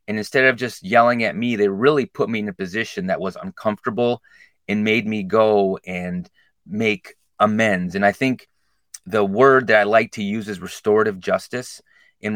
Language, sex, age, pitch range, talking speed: English, male, 30-49, 105-130 Hz, 185 wpm